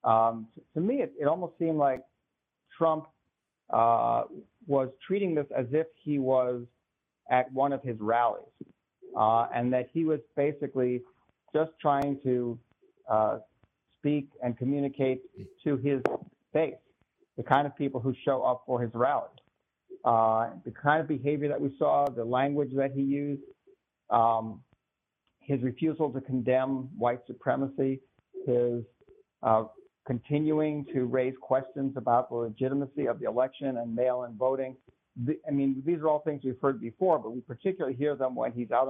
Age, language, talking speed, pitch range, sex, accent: 50-69, English, 155 wpm, 125-145 Hz, male, American